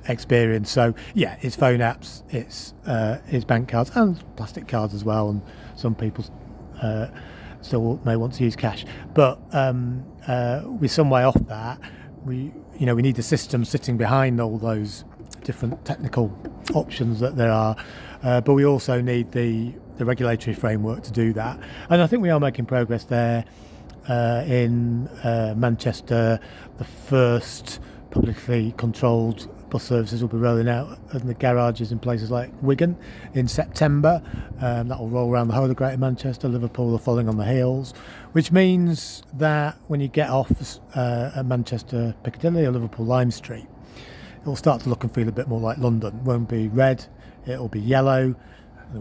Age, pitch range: 30-49, 115-130 Hz